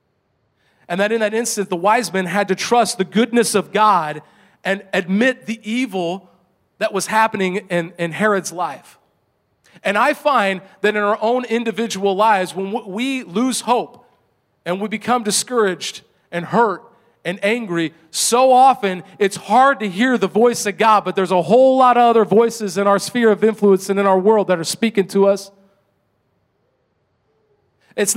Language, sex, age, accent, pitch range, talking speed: English, male, 40-59, American, 190-235 Hz, 170 wpm